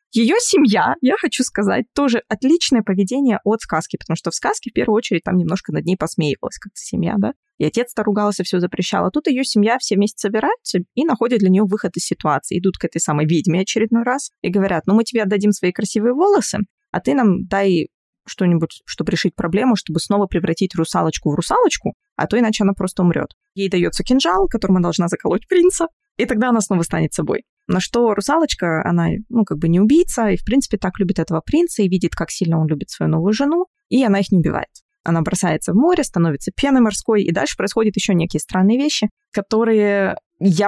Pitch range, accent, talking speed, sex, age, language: 185-240 Hz, native, 205 wpm, female, 20-39, Russian